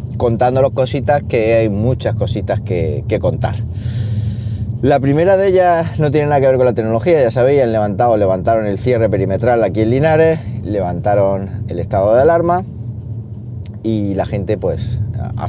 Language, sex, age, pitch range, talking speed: Spanish, male, 30-49, 100-120 Hz, 165 wpm